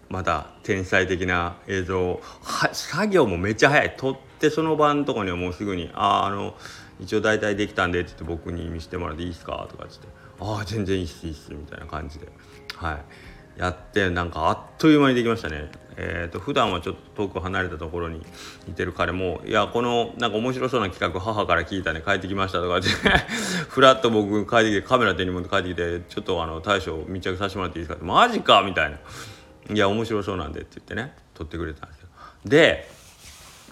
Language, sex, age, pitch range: Japanese, male, 30-49, 90-130 Hz